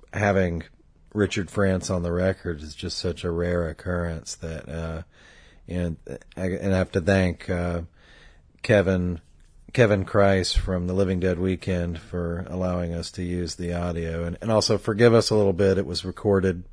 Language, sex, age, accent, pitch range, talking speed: English, male, 40-59, American, 85-95 Hz, 170 wpm